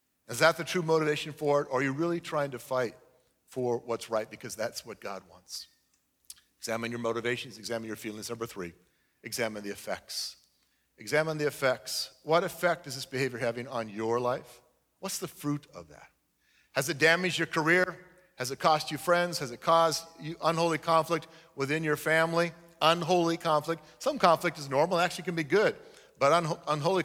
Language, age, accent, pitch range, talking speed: English, 50-69, American, 120-165 Hz, 175 wpm